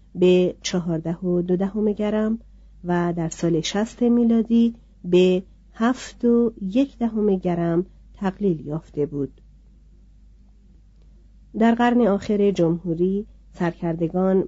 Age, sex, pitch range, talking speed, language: 40-59, female, 165-205 Hz, 90 wpm, Persian